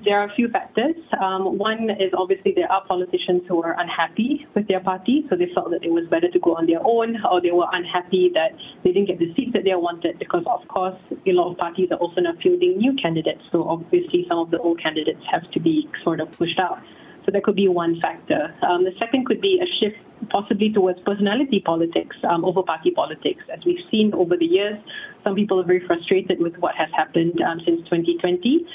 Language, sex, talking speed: English, female, 230 wpm